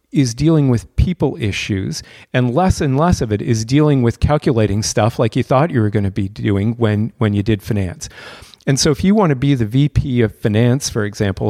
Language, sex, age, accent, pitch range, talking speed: English, male, 40-59, American, 105-135 Hz, 225 wpm